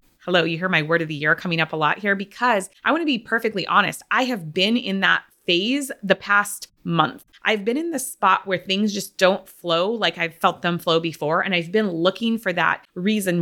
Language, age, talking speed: English, 20-39, 235 wpm